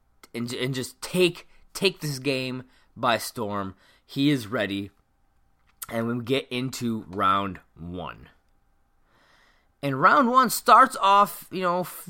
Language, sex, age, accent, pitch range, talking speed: English, male, 20-39, American, 120-175 Hz, 130 wpm